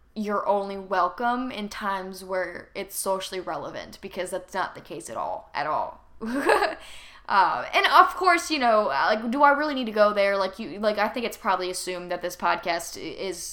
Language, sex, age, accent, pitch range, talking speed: English, female, 10-29, American, 185-240 Hz, 195 wpm